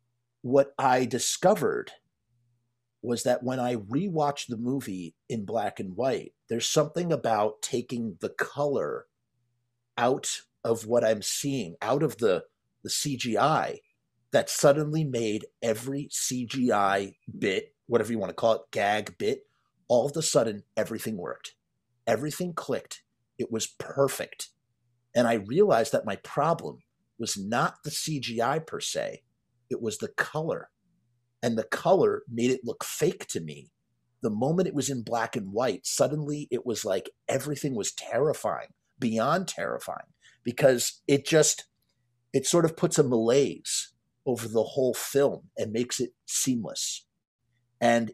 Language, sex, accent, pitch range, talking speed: English, male, American, 115-145 Hz, 145 wpm